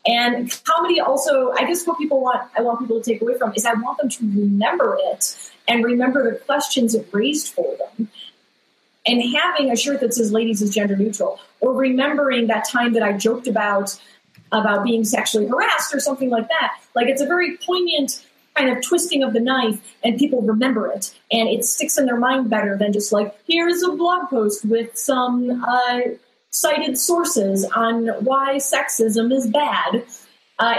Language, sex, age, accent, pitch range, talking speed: English, female, 30-49, American, 225-285 Hz, 185 wpm